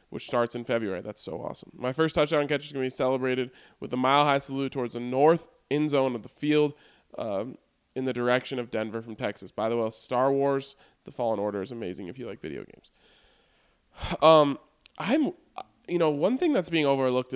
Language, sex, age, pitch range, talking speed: English, male, 20-39, 115-145 Hz, 210 wpm